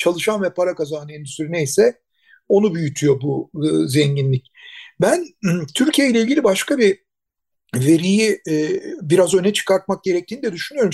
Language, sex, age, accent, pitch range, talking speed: Turkish, male, 60-79, native, 175-235 Hz, 130 wpm